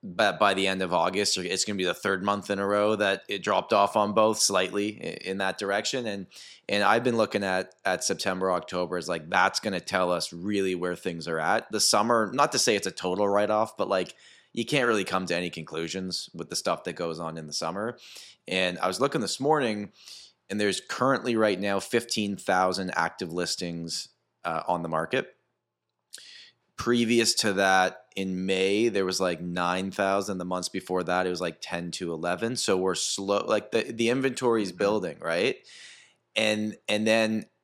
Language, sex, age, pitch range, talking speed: English, male, 20-39, 90-105 Hz, 200 wpm